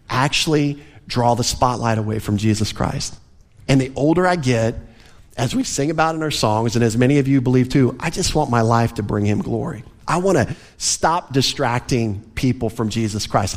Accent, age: American, 40-59